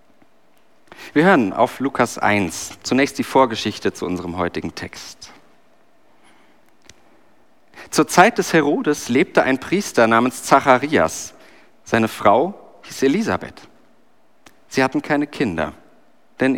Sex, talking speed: male, 110 wpm